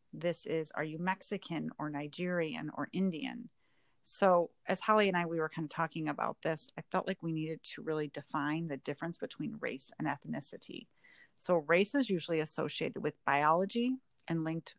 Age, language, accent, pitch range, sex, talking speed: 40-59, English, American, 155-190 Hz, female, 180 wpm